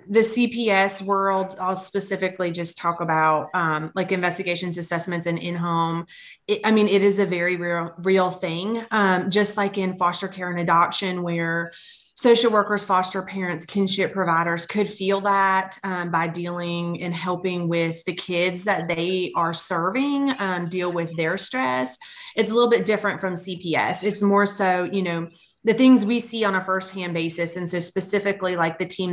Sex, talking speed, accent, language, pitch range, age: female, 175 wpm, American, English, 170-200 Hz, 30-49